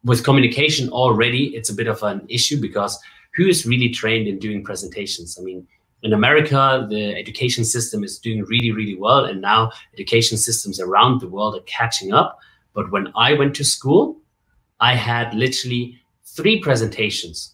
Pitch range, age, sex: 105-130 Hz, 30-49, male